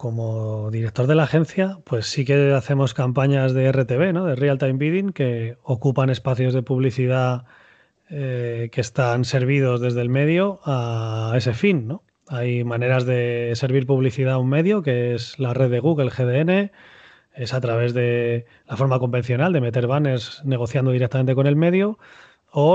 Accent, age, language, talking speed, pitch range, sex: Spanish, 30-49, Spanish, 165 wpm, 125-150 Hz, male